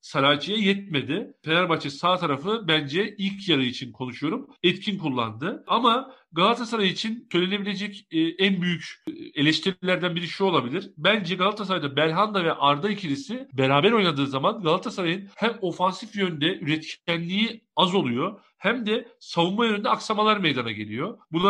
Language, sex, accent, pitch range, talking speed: Turkish, male, native, 145-200 Hz, 130 wpm